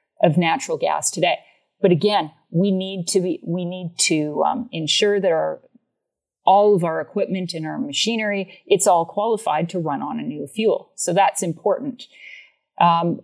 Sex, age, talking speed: female, 40-59, 160 wpm